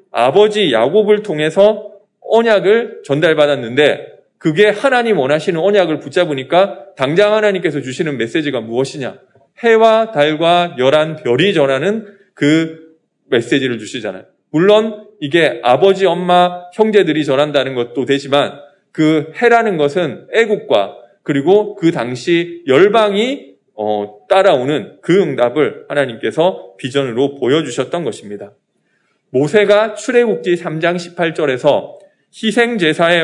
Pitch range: 145-210 Hz